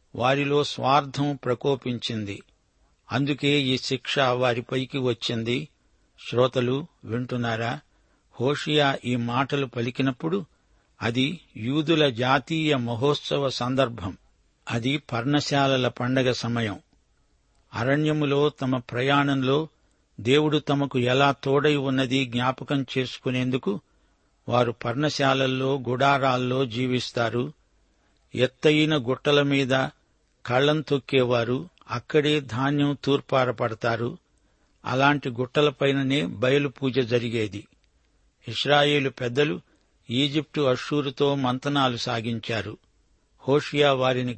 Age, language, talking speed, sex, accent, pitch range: 60-79, Telugu, 75 wpm, male, native, 125-145 Hz